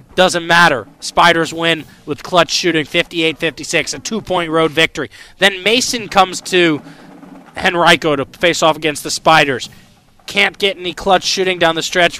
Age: 20-39